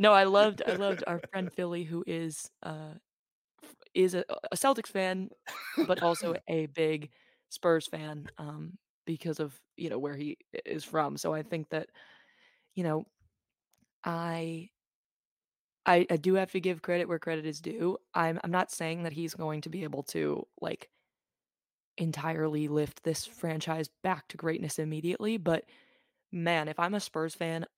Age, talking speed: 20-39, 165 wpm